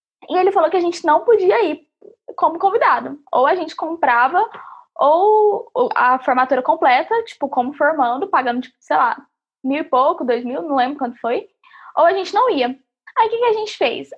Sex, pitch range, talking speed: female, 250-345 Hz, 195 wpm